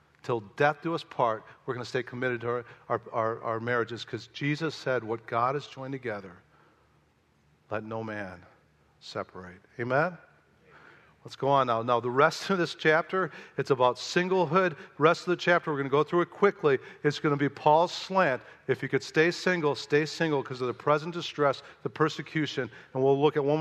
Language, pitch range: English, 135-185 Hz